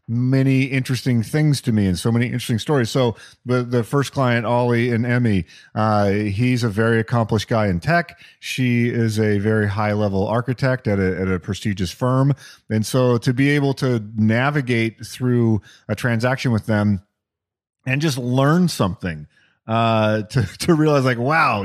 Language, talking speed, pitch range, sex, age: English, 170 wpm, 100-125 Hz, male, 40-59